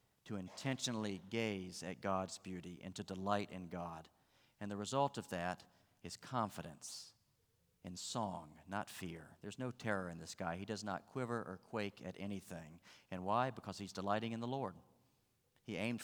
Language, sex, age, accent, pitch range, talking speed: English, male, 50-69, American, 90-115 Hz, 170 wpm